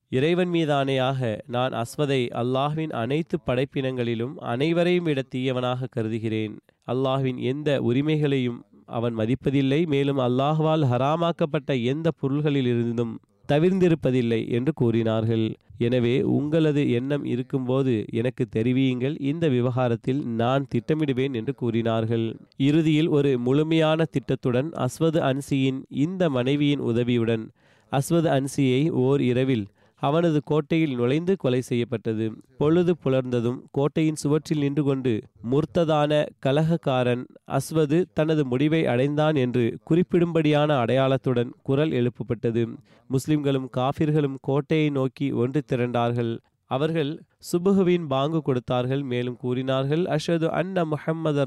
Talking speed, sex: 100 wpm, male